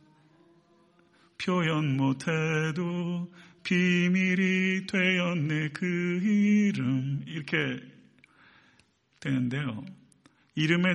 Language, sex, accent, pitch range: Korean, male, native, 140-180 Hz